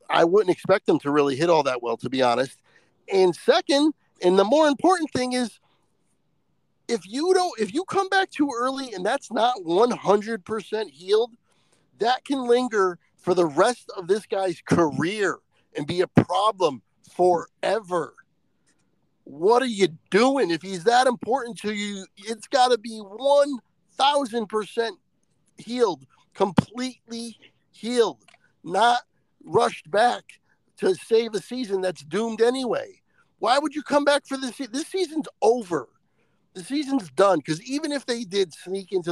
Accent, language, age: American, English, 50-69